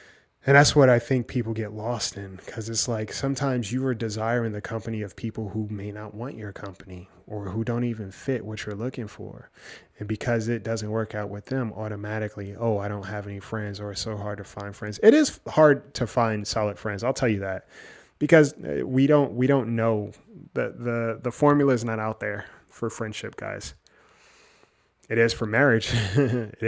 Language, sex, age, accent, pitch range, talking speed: English, male, 20-39, American, 105-130 Hz, 200 wpm